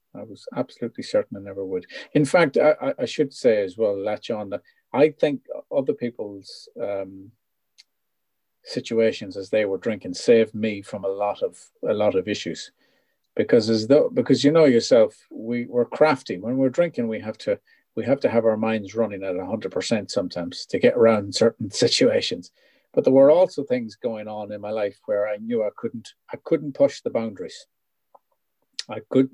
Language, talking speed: English, 190 wpm